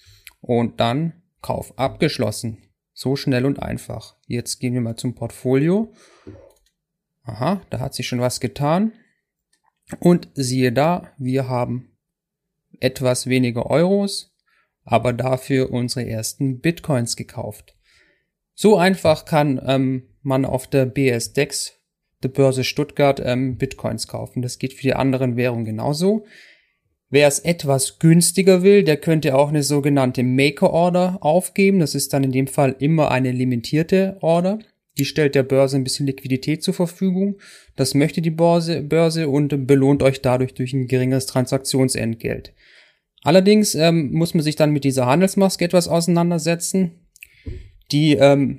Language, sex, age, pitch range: German, male, 30-49, 130-165 Hz